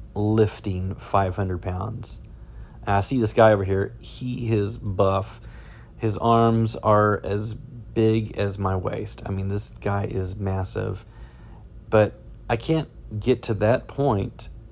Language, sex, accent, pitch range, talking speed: English, male, American, 100-115 Hz, 135 wpm